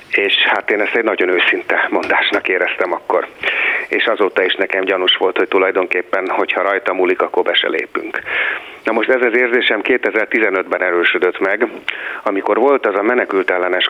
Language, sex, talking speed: Hungarian, male, 165 wpm